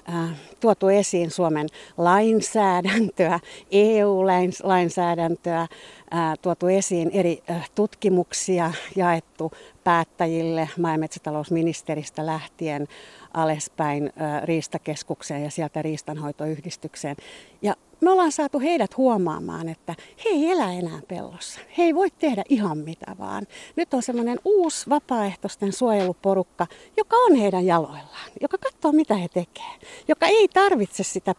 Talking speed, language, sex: 110 wpm, Finnish, female